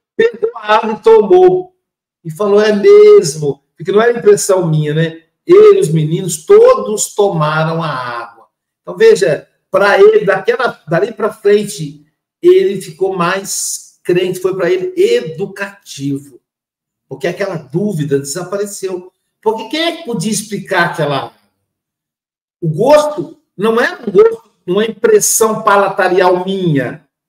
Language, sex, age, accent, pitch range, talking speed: Portuguese, male, 60-79, Brazilian, 155-215 Hz, 130 wpm